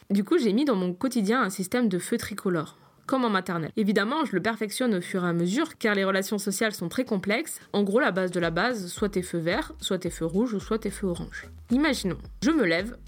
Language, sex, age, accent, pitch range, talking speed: French, female, 20-39, French, 185-235 Hz, 250 wpm